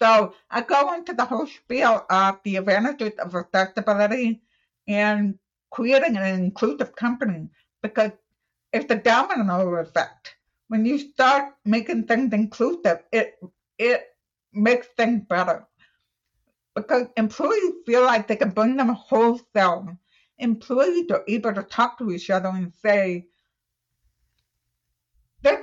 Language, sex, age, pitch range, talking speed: English, female, 60-79, 195-265 Hz, 125 wpm